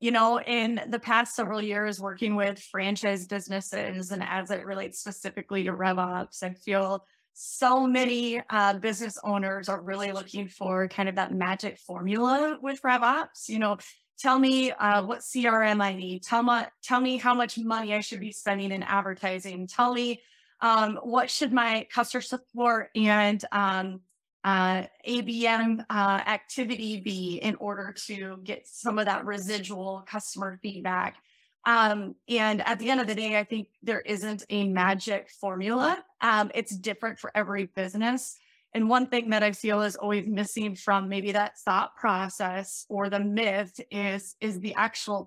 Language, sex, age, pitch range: English, female, 20-39, 195-230 Hz